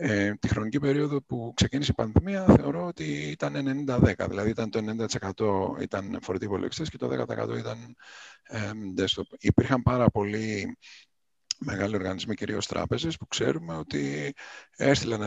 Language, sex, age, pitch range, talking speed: Greek, male, 50-69, 105-160 Hz, 135 wpm